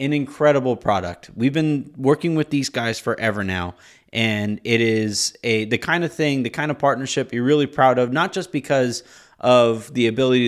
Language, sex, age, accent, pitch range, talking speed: English, male, 30-49, American, 115-145 Hz, 190 wpm